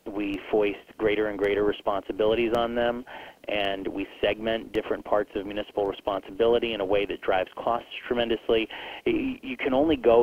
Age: 30-49